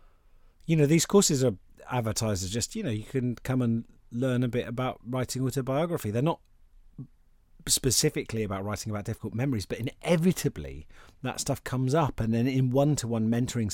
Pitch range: 90-130 Hz